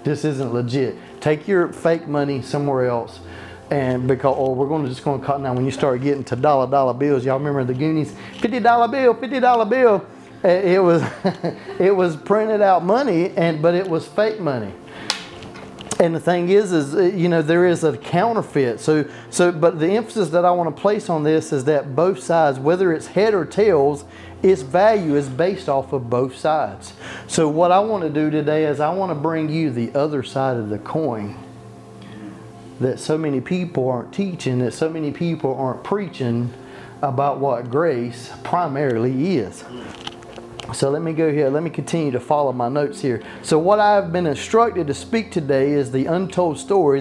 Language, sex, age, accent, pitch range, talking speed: English, male, 30-49, American, 135-175 Hz, 190 wpm